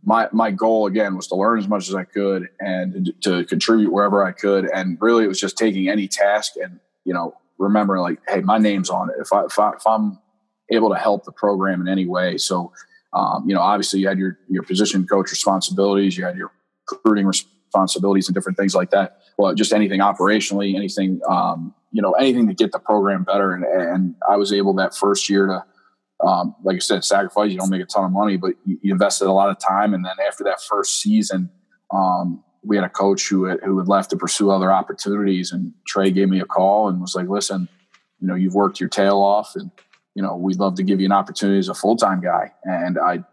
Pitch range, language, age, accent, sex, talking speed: 95-105 Hz, English, 20-39, American, male, 235 wpm